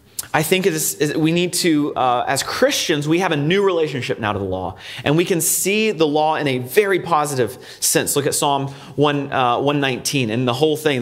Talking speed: 230 wpm